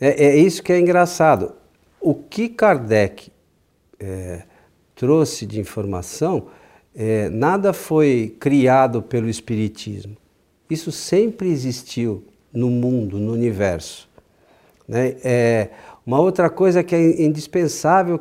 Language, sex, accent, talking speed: Portuguese, male, Brazilian, 100 wpm